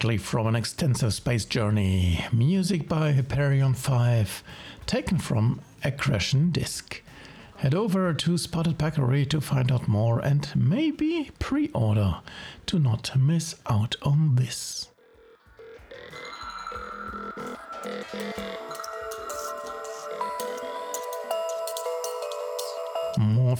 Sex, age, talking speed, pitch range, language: male, 60-79, 85 wpm, 115-175 Hz, English